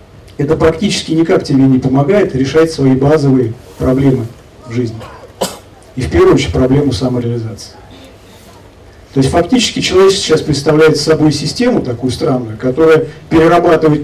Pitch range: 105-155 Hz